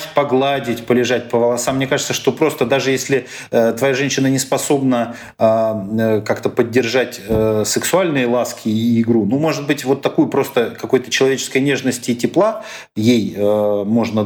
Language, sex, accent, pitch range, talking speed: Russian, male, native, 115-150 Hz, 140 wpm